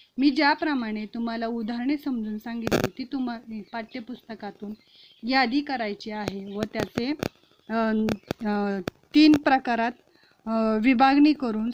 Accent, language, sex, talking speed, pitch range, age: native, Marathi, female, 90 wpm, 215-260 Hz, 30-49